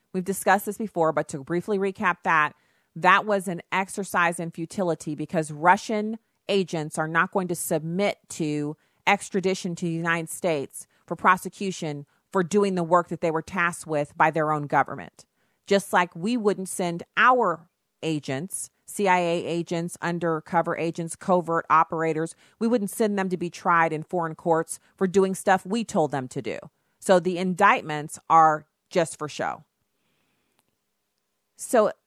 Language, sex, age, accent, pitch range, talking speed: English, female, 40-59, American, 160-195 Hz, 155 wpm